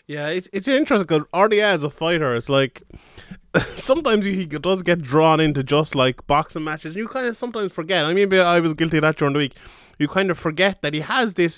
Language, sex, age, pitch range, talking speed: English, male, 20-39, 135-175 Hz, 235 wpm